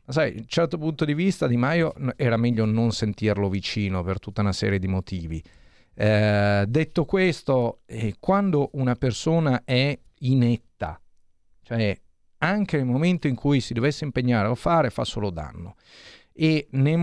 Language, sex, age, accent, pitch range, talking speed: Italian, male, 40-59, native, 110-155 Hz, 160 wpm